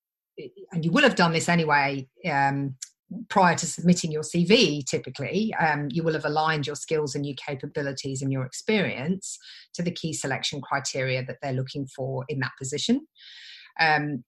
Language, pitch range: English, 140-180 Hz